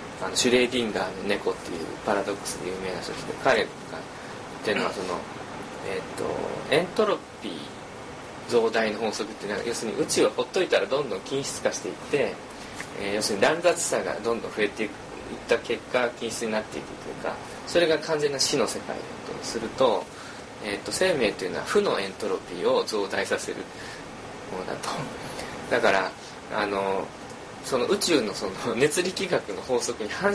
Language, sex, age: Japanese, male, 20-39